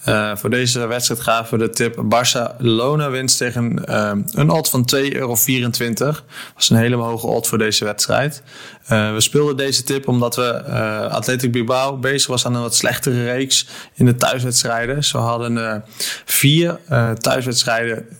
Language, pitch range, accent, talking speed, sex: Dutch, 115-135 Hz, Dutch, 170 wpm, male